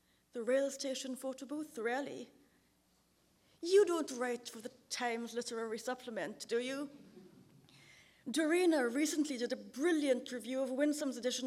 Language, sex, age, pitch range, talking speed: English, female, 30-49, 230-270 Hz, 130 wpm